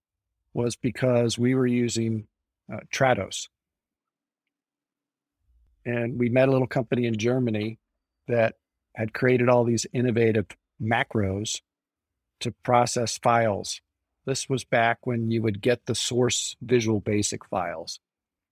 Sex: male